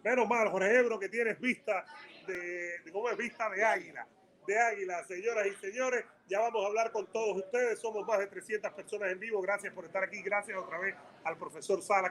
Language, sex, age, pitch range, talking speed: Spanish, male, 30-49, 190-235 Hz, 210 wpm